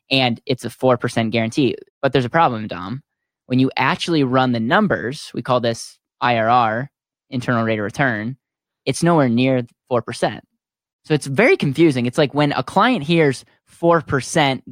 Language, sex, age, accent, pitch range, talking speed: English, male, 10-29, American, 120-155 Hz, 160 wpm